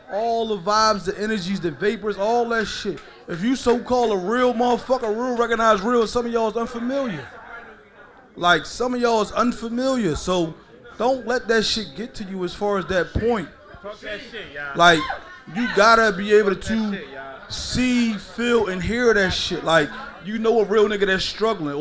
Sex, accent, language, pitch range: male, American, English, 200-240 Hz